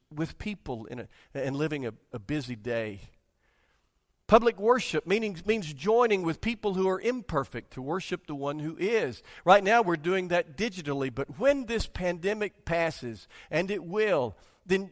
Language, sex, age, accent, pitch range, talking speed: English, male, 50-69, American, 145-210 Hz, 165 wpm